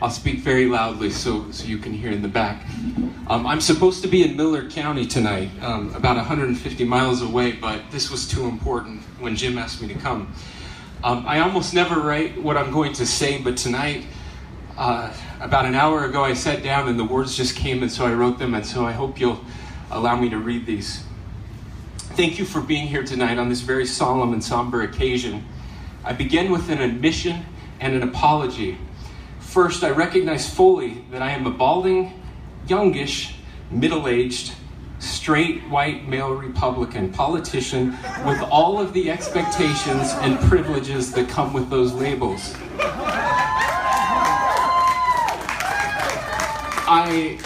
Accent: American